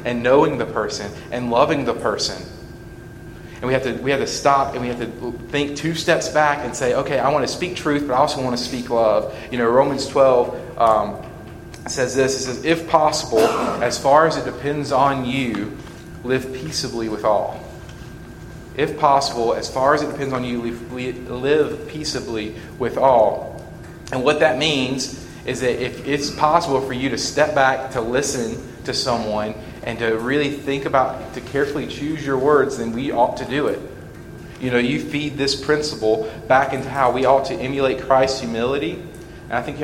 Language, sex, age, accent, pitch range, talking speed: English, male, 30-49, American, 120-145 Hz, 190 wpm